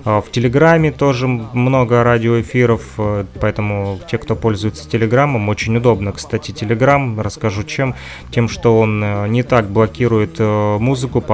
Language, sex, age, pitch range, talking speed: Russian, male, 20-39, 105-120 Hz, 125 wpm